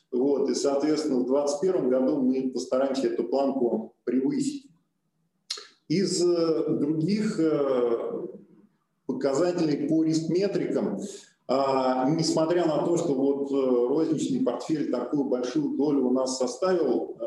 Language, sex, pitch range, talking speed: Russian, male, 130-180 Hz, 100 wpm